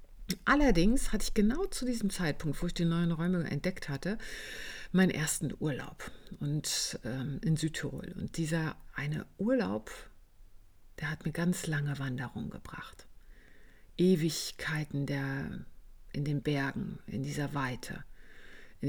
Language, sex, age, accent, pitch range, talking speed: German, female, 50-69, German, 145-190 Hz, 125 wpm